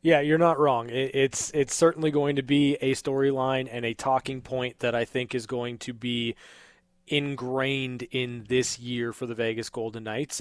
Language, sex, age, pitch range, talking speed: English, male, 20-39, 125-140 Hz, 185 wpm